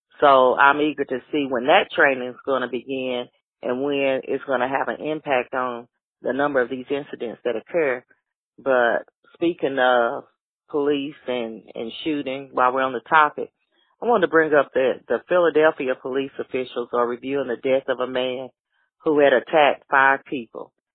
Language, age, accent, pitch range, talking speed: English, 40-59, American, 130-160 Hz, 180 wpm